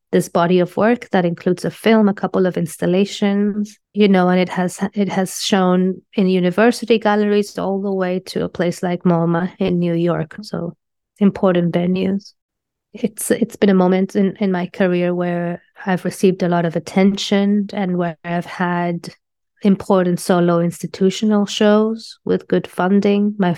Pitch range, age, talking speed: 180-210 Hz, 20-39, 165 wpm